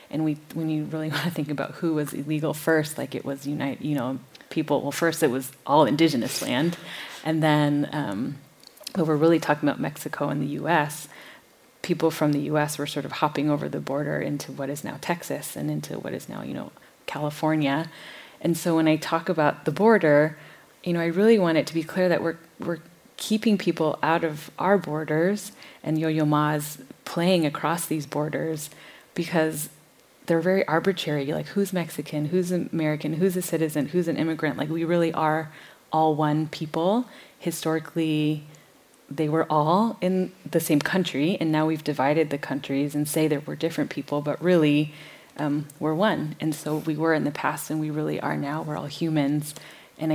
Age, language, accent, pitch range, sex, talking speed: 30-49, English, American, 145-165 Hz, female, 190 wpm